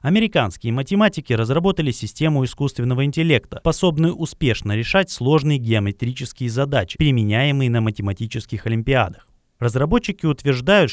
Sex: male